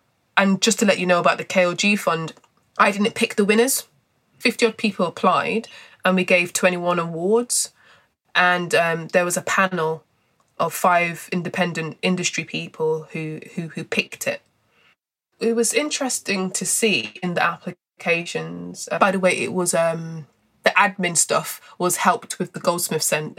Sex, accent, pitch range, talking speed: female, British, 165-200 Hz, 165 wpm